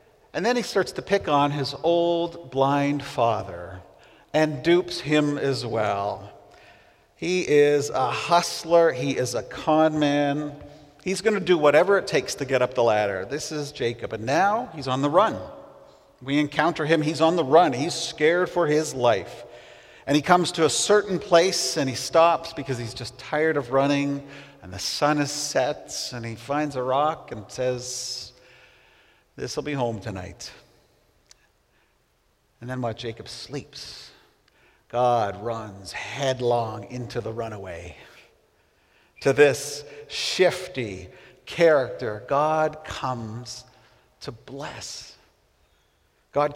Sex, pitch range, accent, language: male, 125-160 Hz, American, English